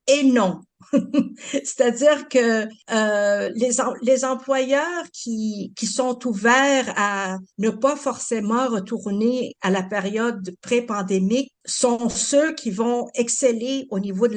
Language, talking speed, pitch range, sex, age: French, 125 wpm, 205-255 Hz, female, 50-69